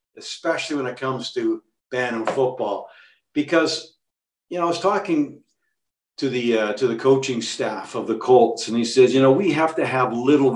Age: 50-69